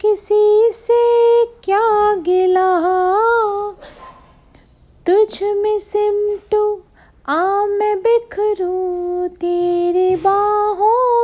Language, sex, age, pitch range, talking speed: Hindi, female, 30-49, 255-360 Hz, 65 wpm